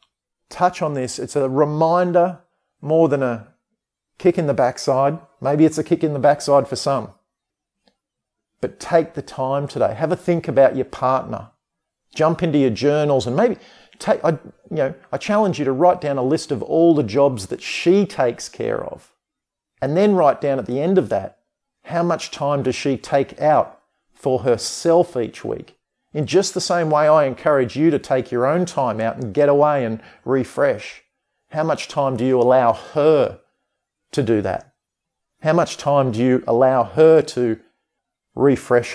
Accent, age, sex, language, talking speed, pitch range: Australian, 40-59, male, English, 180 wpm, 130-160 Hz